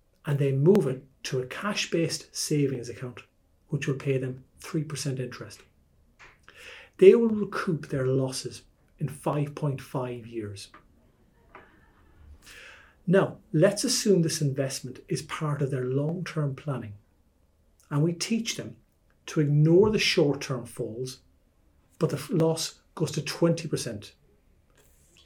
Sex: male